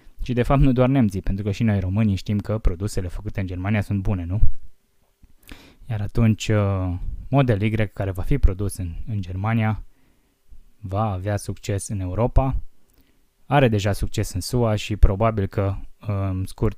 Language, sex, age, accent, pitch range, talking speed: Romanian, male, 20-39, native, 95-115 Hz, 165 wpm